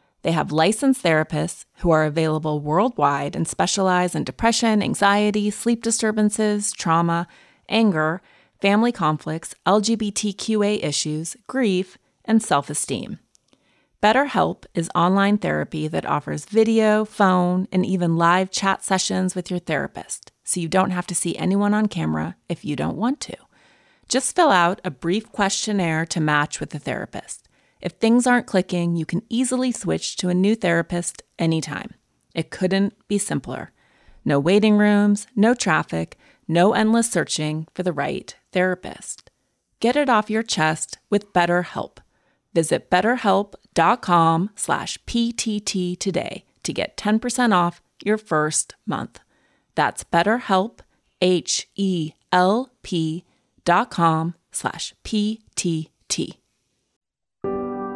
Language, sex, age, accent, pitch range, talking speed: English, female, 30-49, American, 170-215 Hz, 115 wpm